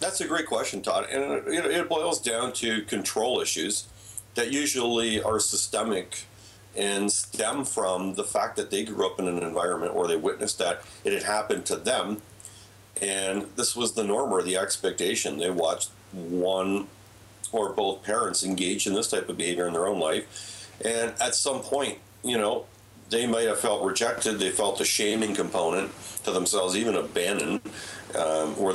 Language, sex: English, male